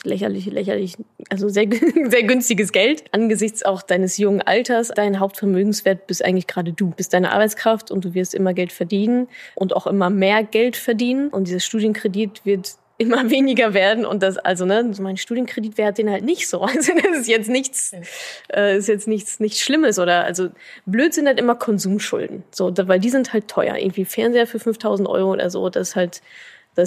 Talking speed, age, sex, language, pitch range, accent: 195 wpm, 10-29, female, German, 195-235 Hz, German